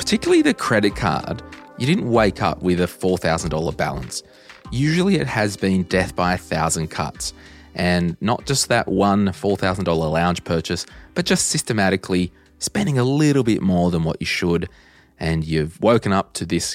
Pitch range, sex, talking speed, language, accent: 85-120 Hz, male, 170 wpm, English, Australian